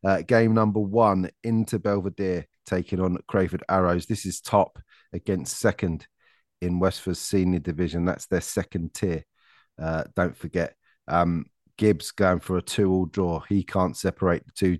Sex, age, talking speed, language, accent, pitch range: male, 30-49, 150 wpm, English, British, 90-105 Hz